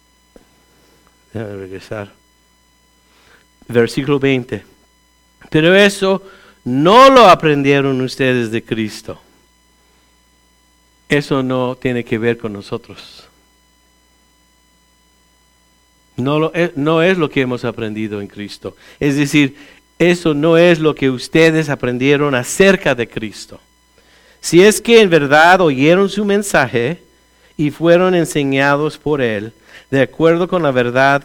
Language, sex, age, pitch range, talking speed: English, male, 50-69, 120-175 Hz, 115 wpm